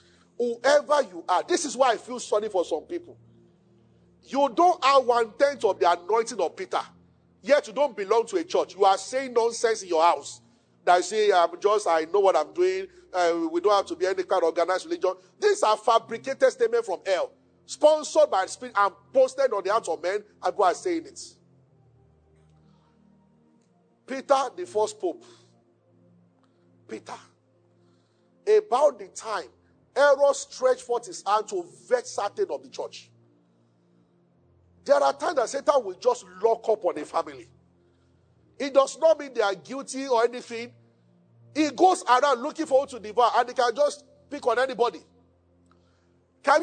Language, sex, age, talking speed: English, male, 40-59, 170 wpm